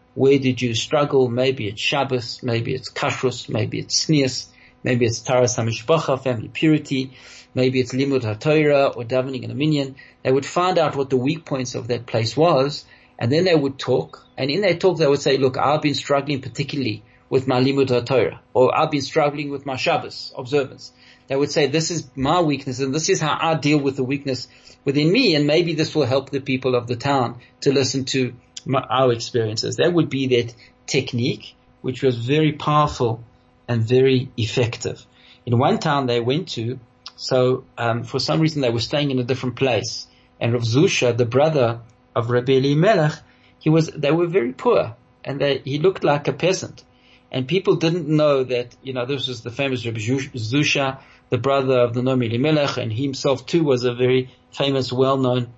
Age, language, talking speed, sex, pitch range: 40-59, English, 195 wpm, male, 125-145 Hz